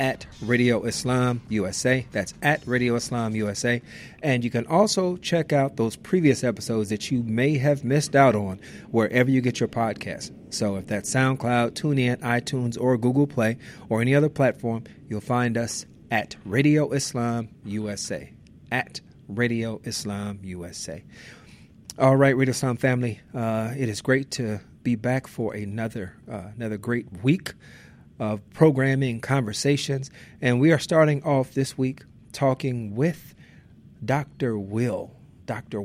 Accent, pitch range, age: American, 115-140 Hz, 40-59